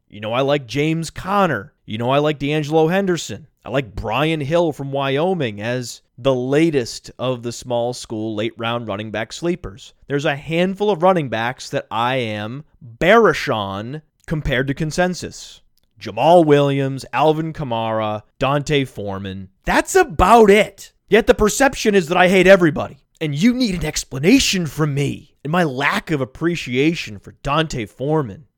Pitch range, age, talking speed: 125-200 Hz, 30-49, 160 wpm